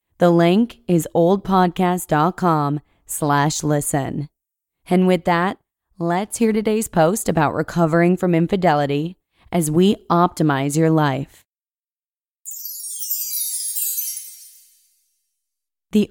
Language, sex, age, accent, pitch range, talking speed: English, female, 20-39, American, 150-185 Hz, 85 wpm